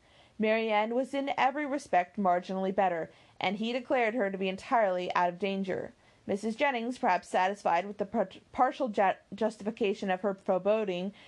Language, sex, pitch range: English, female, 195-245 Hz